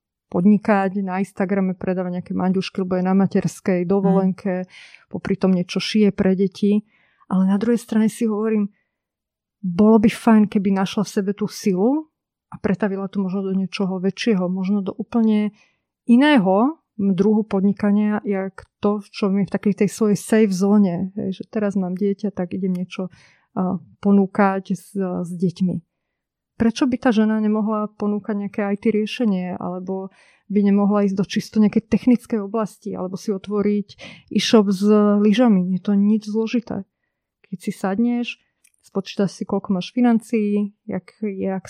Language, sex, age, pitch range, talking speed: Slovak, female, 30-49, 190-215 Hz, 150 wpm